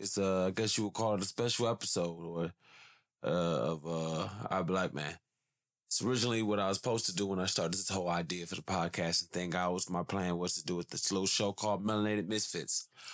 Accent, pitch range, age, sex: American, 85-115 Hz, 20-39, male